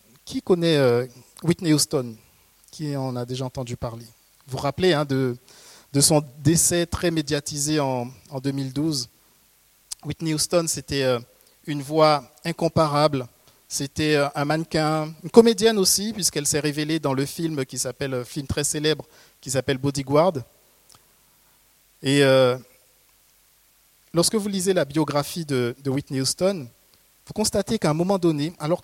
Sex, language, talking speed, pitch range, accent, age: male, French, 135 wpm, 135-175 Hz, French, 50-69